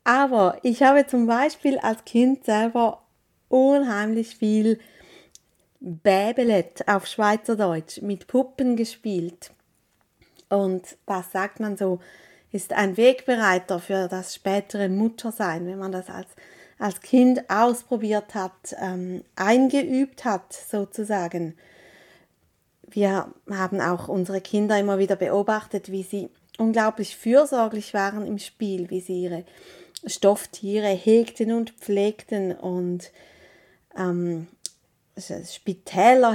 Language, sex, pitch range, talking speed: German, female, 190-225 Hz, 105 wpm